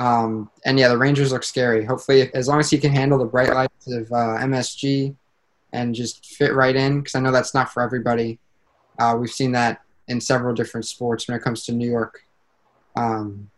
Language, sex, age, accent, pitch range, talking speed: English, male, 20-39, American, 115-130 Hz, 210 wpm